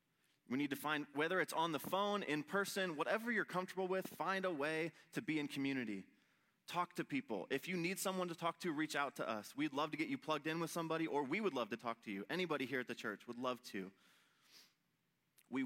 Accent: American